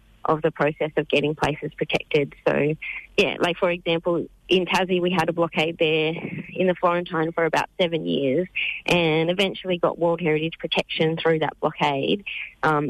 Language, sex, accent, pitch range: English, female, Australian, 145-165 Hz